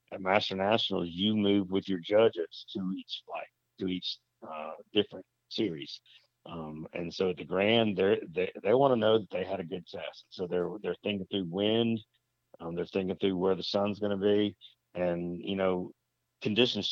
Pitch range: 90-105 Hz